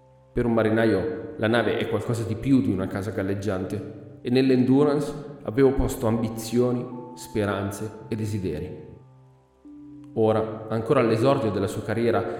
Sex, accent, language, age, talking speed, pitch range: male, native, Italian, 30-49, 130 wpm, 105-130 Hz